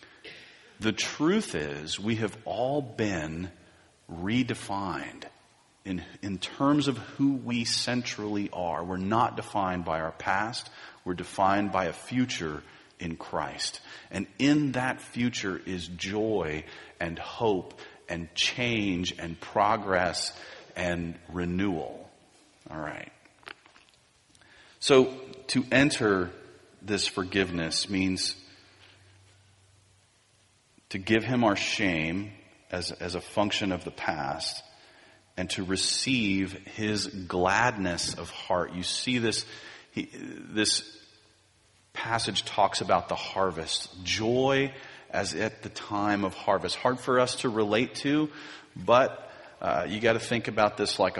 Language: English